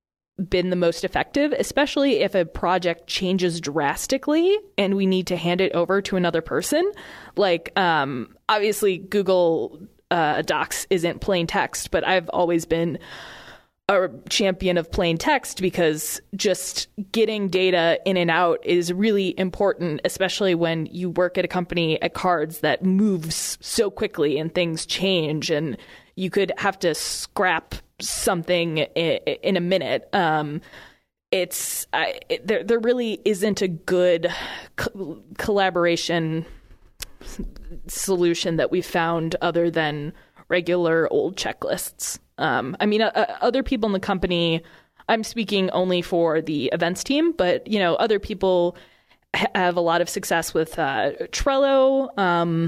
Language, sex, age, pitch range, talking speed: English, female, 20-39, 170-205 Hz, 145 wpm